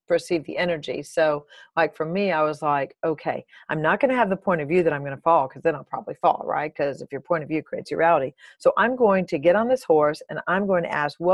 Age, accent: 40-59, American